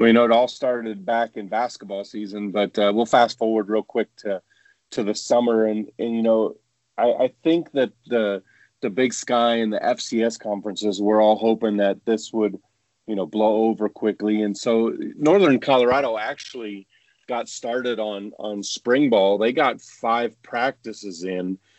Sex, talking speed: male, 175 wpm